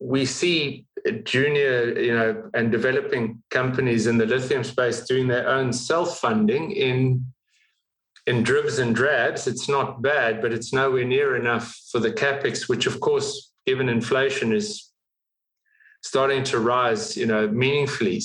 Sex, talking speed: male, 150 wpm